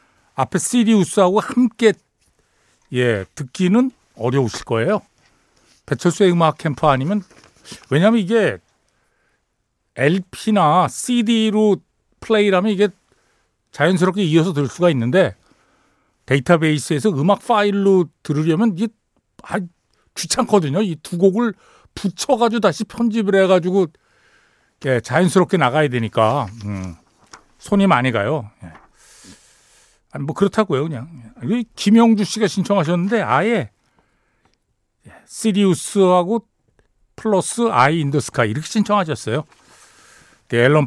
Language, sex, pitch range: Korean, male, 125-195 Hz